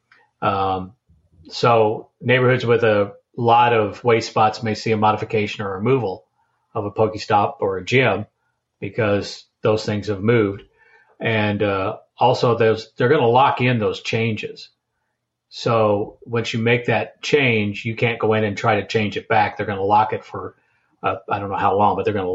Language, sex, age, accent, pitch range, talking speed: English, male, 40-59, American, 110-120 Hz, 190 wpm